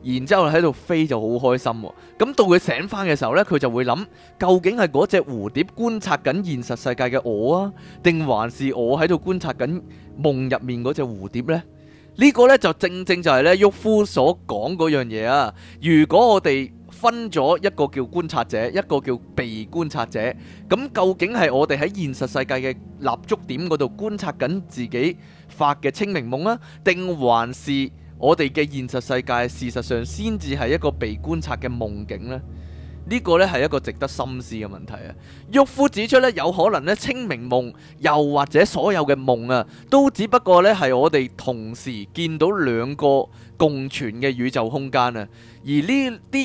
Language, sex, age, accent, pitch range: Chinese, male, 20-39, native, 125-185 Hz